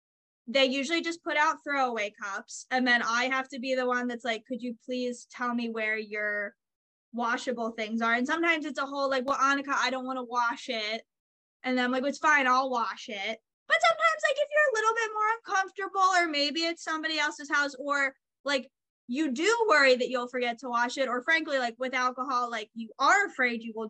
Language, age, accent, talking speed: English, 20-39, American, 220 wpm